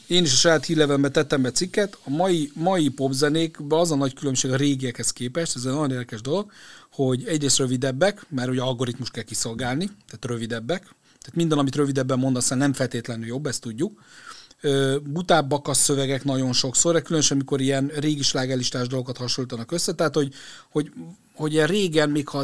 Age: 40-59